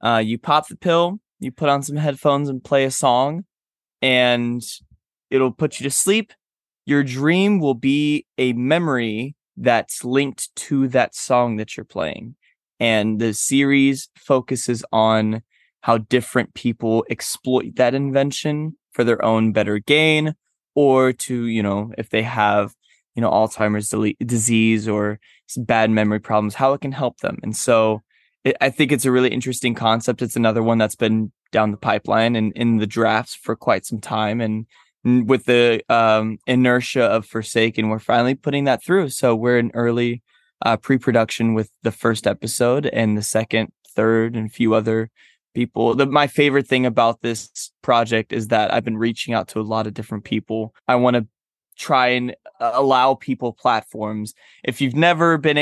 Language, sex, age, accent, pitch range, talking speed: English, male, 20-39, American, 110-135 Hz, 170 wpm